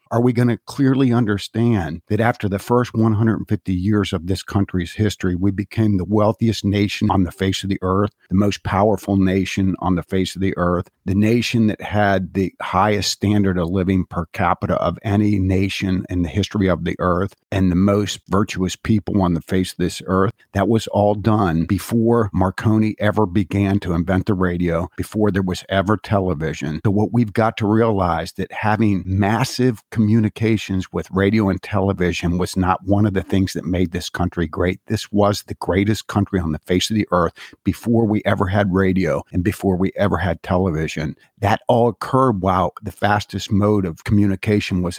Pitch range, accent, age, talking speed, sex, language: 95-105 Hz, American, 50-69, 190 wpm, male, English